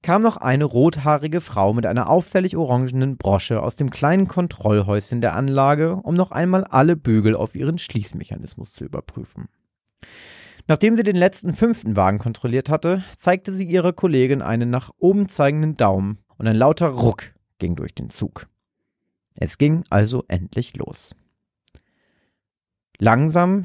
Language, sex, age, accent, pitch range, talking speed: German, male, 30-49, German, 105-150 Hz, 145 wpm